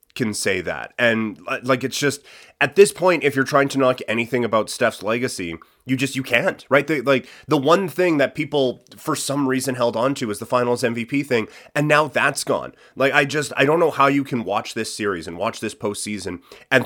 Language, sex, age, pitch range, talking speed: English, male, 30-49, 115-150 Hz, 220 wpm